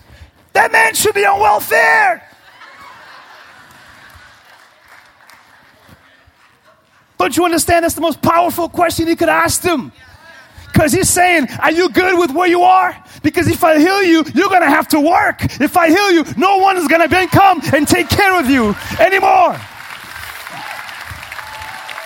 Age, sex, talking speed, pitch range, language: 30-49, male, 150 wpm, 315-385 Hz, English